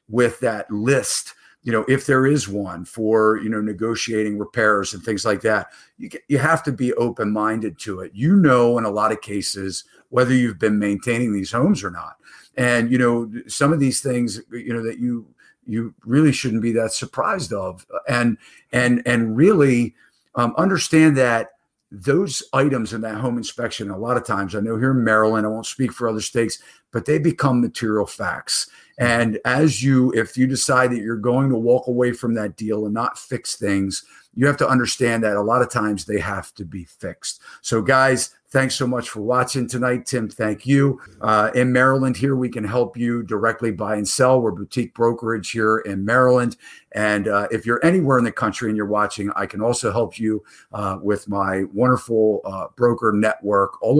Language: English